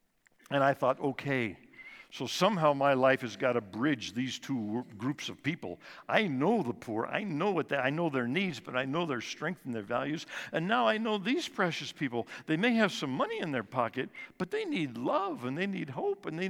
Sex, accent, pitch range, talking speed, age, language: male, American, 120-160 Hz, 225 wpm, 60-79, English